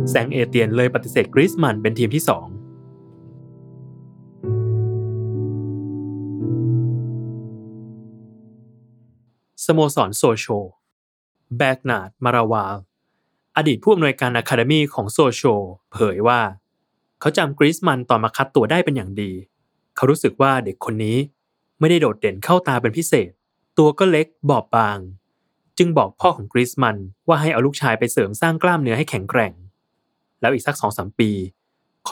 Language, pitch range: Thai, 100-135 Hz